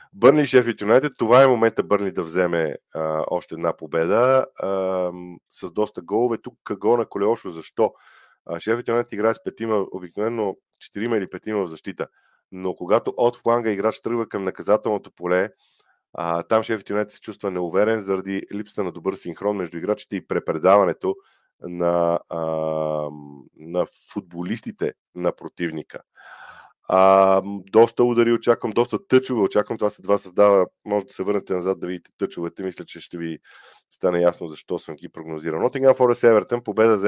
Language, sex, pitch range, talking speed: Bulgarian, male, 85-110 Hz, 160 wpm